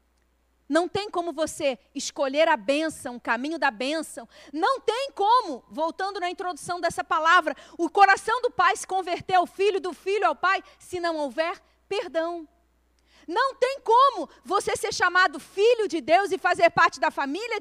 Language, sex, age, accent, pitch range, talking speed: Portuguese, female, 40-59, Brazilian, 315-395 Hz, 165 wpm